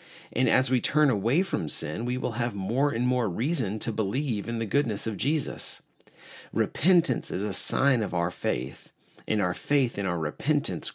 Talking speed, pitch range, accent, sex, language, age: 185 wpm, 90-130 Hz, American, male, English, 40-59